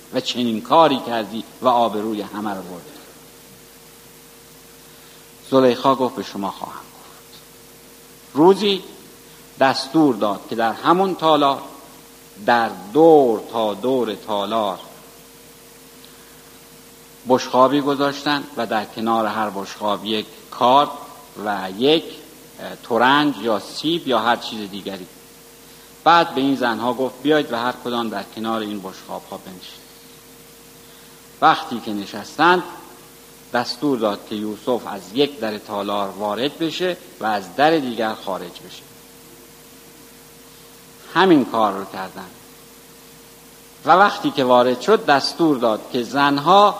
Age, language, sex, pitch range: 60-79, Persian, male, 110-155 Hz